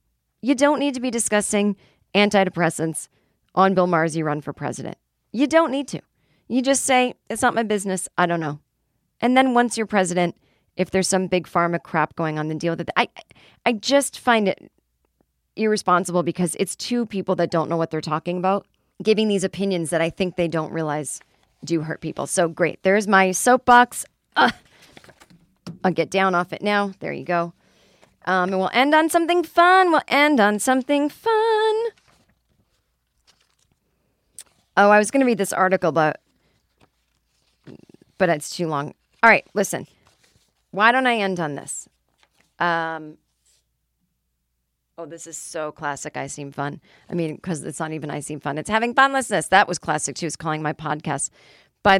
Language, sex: English, female